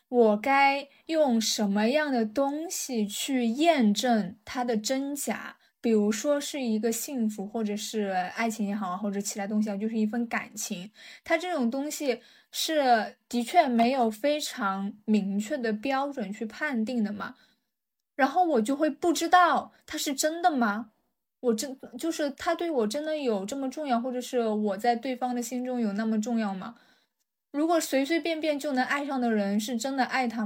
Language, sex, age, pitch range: Chinese, female, 20-39, 215-275 Hz